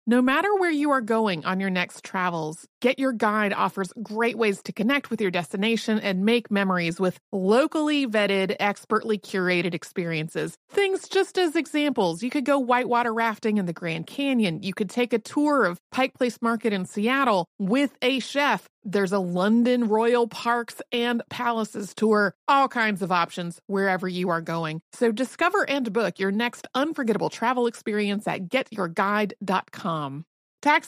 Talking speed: 165 wpm